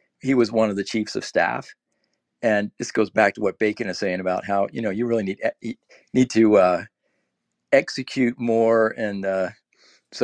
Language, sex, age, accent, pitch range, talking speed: English, male, 50-69, American, 100-125 Hz, 190 wpm